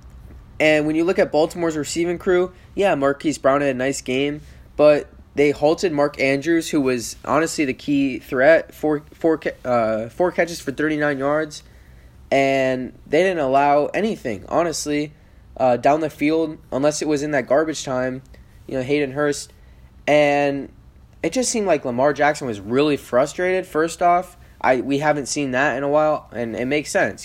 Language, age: English, 10-29